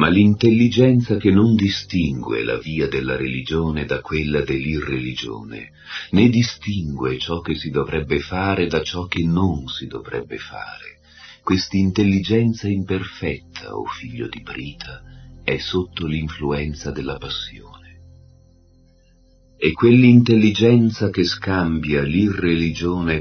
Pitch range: 75-95 Hz